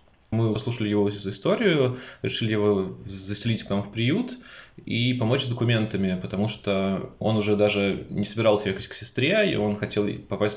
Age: 20-39